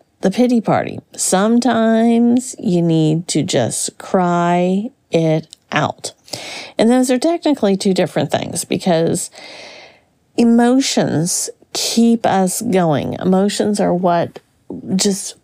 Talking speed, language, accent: 105 wpm, English, American